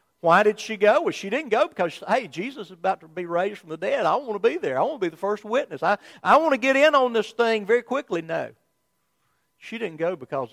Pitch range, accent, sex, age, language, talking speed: 145-215 Hz, American, male, 50-69, English, 270 wpm